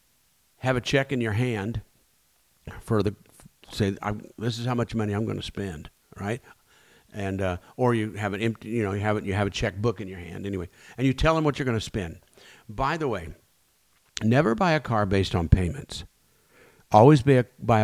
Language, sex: English, male